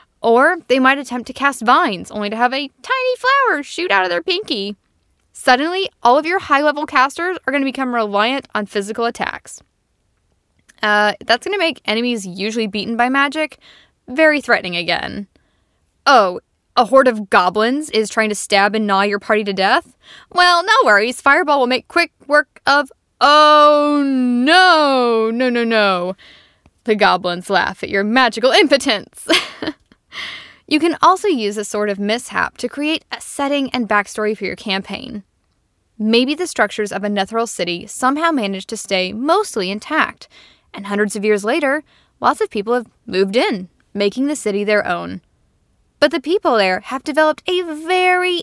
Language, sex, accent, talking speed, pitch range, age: English, female, American, 165 wpm, 210-305 Hz, 10-29